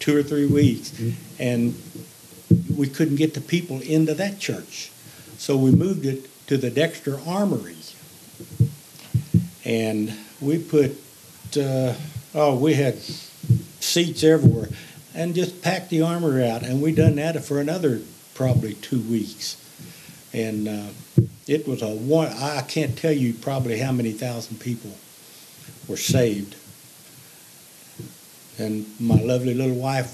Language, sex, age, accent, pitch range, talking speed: English, male, 60-79, American, 115-145 Hz, 135 wpm